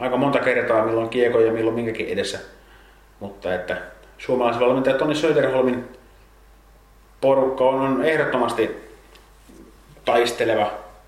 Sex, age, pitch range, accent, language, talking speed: male, 30-49, 115-145 Hz, native, Finnish, 90 wpm